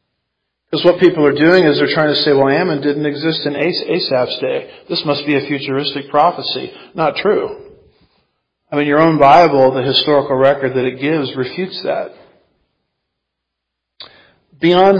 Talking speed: 155 wpm